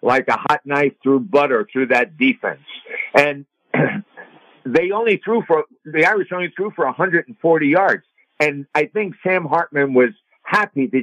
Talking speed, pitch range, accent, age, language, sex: 160 wpm, 135-180 Hz, American, 60-79, English, male